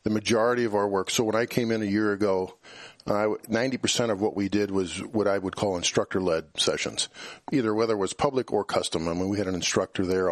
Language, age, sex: English, 40-59, male